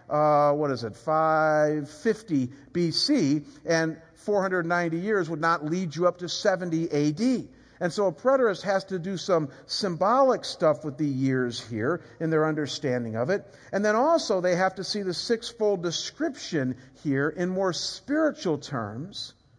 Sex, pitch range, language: male, 155-210 Hz, English